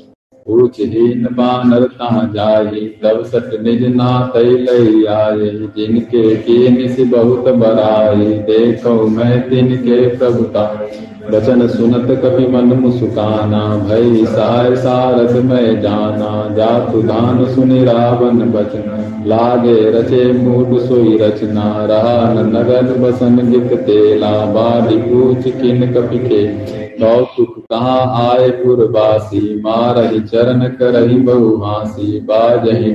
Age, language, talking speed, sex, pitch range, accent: 40-59, Hindi, 70 wpm, male, 110-125 Hz, native